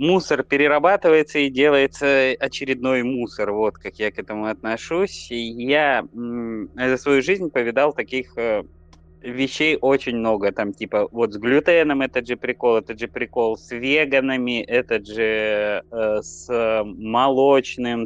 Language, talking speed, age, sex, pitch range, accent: Russian, 125 wpm, 20-39, male, 110-140 Hz, native